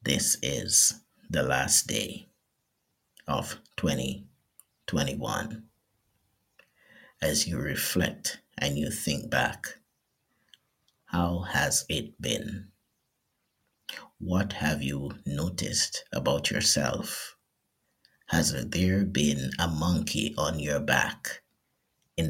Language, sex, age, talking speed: English, male, 50-69, 90 wpm